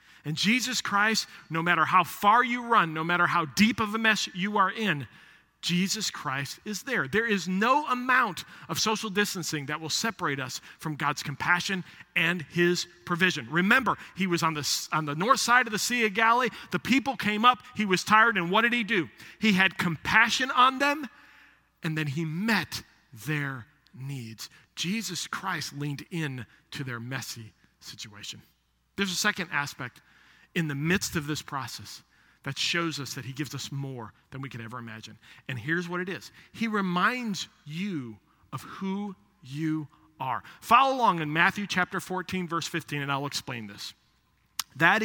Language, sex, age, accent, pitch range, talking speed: English, male, 40-59, American, 140-200 Hz, 175 wpm